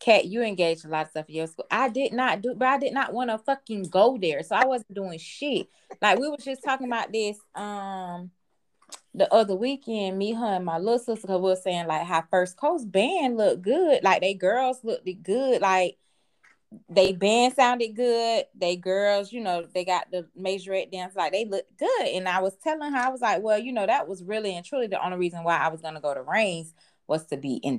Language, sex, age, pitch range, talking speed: English, female, 20-39, 170-255 Hz, 235 wpm